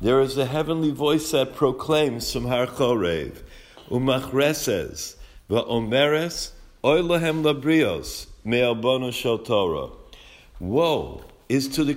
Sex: male